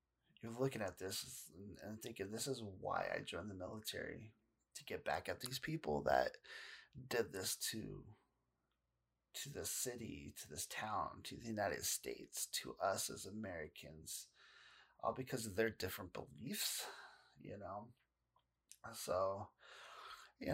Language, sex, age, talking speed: English, male, 30-49, 135 wpm